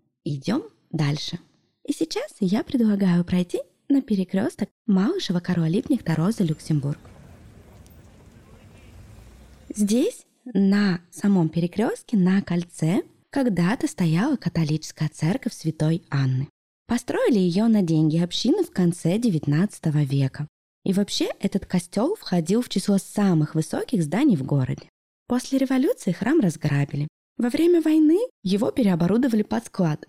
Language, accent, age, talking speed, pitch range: Russian, native, 20-39, 115 wpm, 165-235 Hz